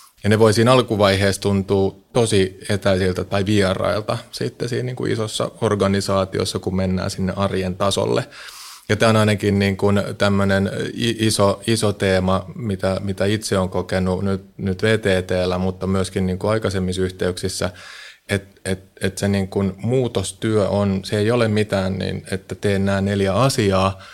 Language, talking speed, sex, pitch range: Finnish, 155 wpm, male, 95-105 Hz